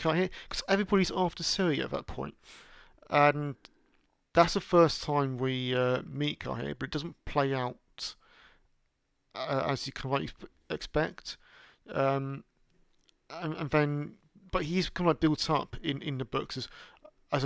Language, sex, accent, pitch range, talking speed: English, male, British, 130-165 Hz, 150 wpm